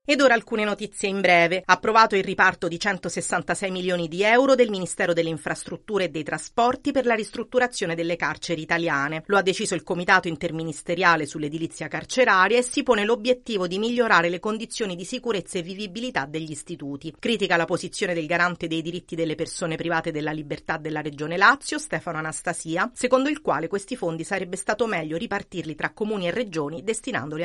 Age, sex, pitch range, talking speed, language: 40-59, female, 170-225 Hz, 175 wpm, Italian